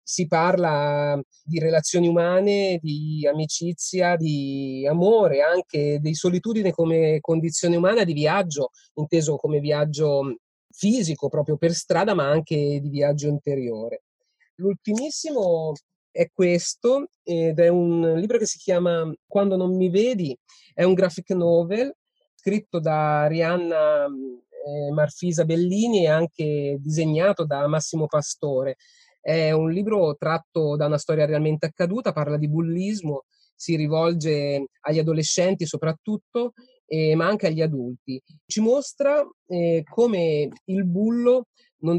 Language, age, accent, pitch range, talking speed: Italian, 30-49, native, 150-185 Hz, 125 wpm